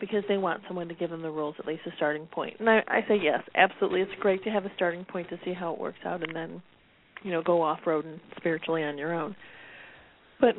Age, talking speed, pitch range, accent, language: 30-49, 260 wpm, 175-195 Hz, American, English